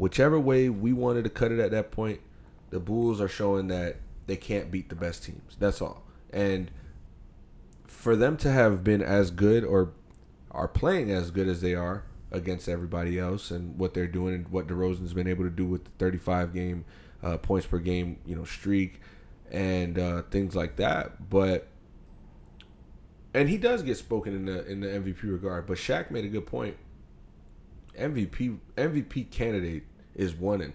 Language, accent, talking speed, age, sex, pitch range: English, American, 180 wpm, 30-49, male, 90-100 Hz